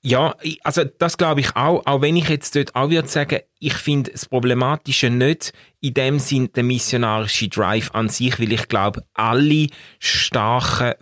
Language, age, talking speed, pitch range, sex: German, 30-49, 175 wpm, 110-130 Hz, male